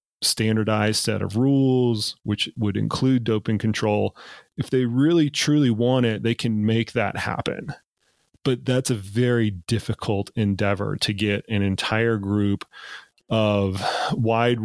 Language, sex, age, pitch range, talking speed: Slovak, male, 30-49, 105-120 Hz, 135 wpm